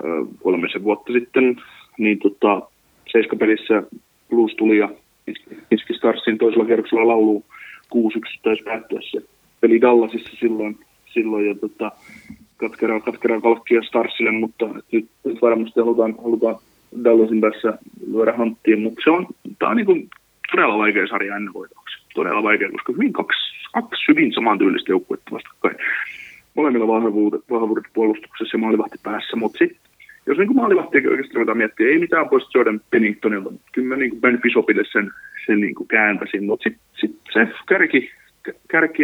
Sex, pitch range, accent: male, 110-150 Hz, native